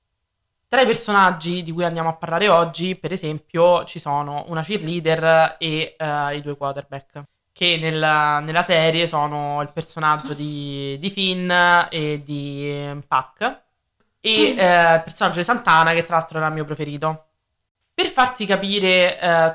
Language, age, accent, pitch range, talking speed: Italian, 20-39, native, 150-185 Hz, 155 wpm